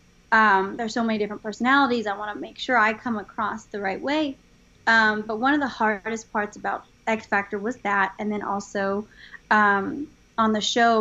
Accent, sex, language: American, female, English